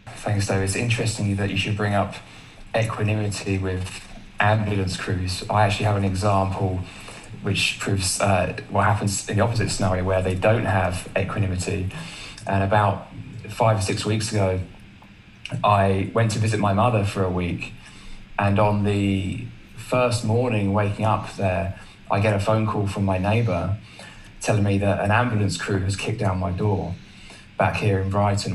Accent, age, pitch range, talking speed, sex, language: British, 20-39, 95-110 Hz, 165 wpm, male, English